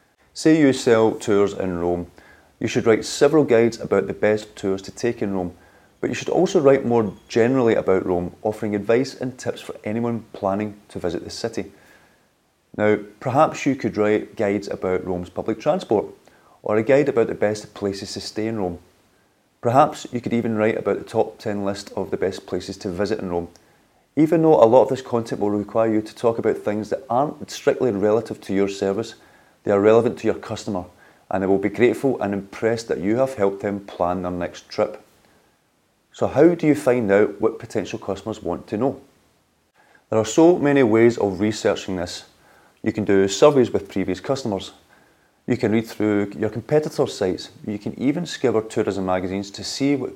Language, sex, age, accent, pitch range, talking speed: English, male, 30-49, British, 95-115 Hz, 195 wpm